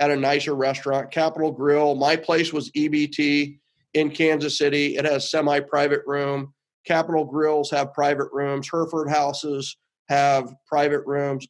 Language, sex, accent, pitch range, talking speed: English, male, American, 140-160 Hz, 140 wpm